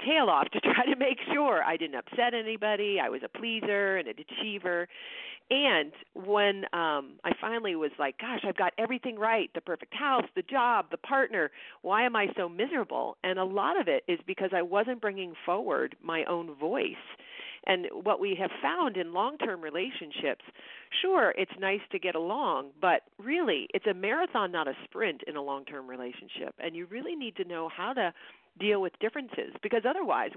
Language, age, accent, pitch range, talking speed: English, 40-59, American, 165-235 Hz, 190 wpm